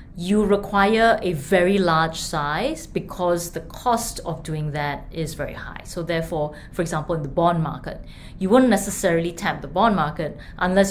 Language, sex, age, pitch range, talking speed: English, female, 20-39, 160-190 Hz, 170 wpm